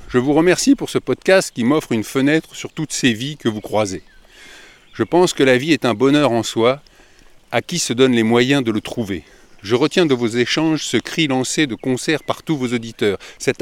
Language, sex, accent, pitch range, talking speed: French, male, French, 115-145 Hz, 225 wpm